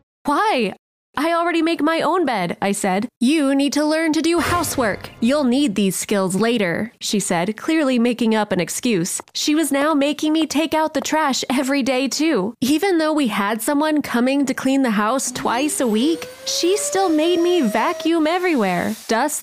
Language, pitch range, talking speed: English, 225-310 Hz, 185 wpm